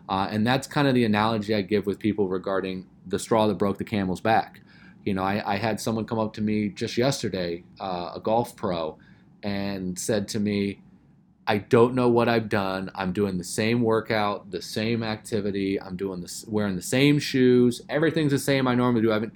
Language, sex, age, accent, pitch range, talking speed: English, male, 30-49, American, 95-120 Hz, 210 wpm